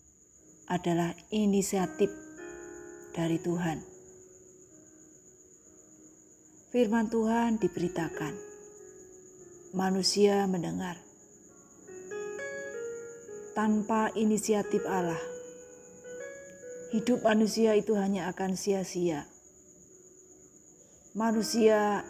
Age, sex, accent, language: 30-49, female, native, Indonesian